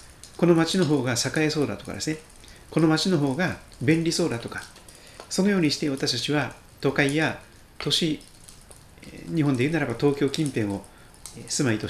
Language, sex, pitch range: Japanese, male, 105-145 Hz